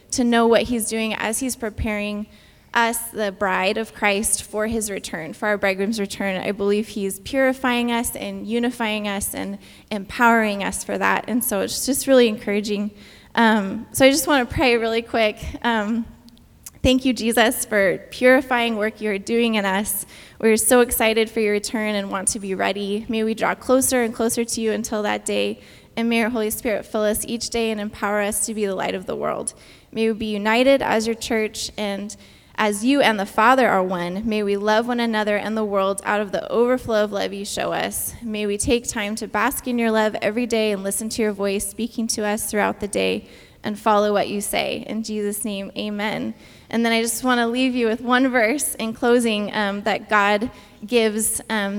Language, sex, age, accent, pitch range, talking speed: English, female, 20-39, American, 205-235 Hz, 210 wpm